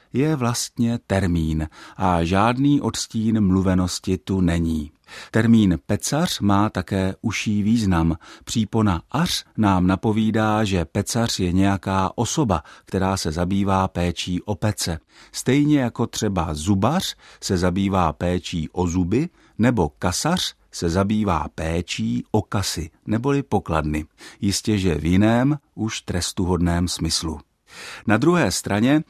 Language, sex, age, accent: Czech, male, 50-69, native